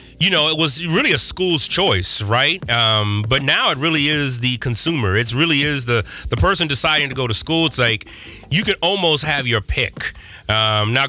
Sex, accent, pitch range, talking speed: male, American, 120-155 Hz, 205 wpm